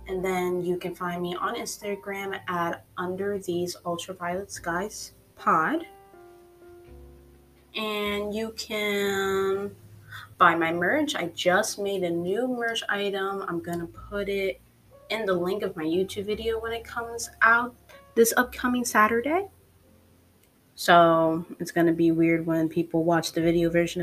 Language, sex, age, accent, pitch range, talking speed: English, female, 20-39, American, 165-205 Hz, 145 wpm